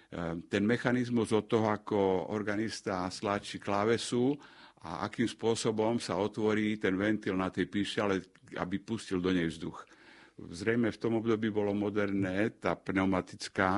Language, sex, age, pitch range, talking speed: Slovak, male, 60-79, 90-105 Hz, 135 wpm